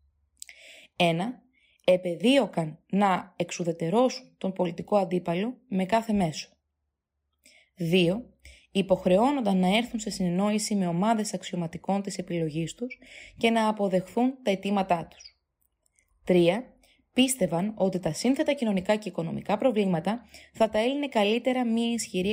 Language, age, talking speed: Greek, 20-39, 115 wpm